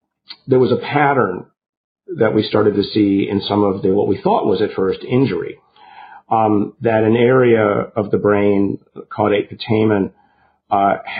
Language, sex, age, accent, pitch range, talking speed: English, male, 50-69, American, 95-115 Hz, 160 wpm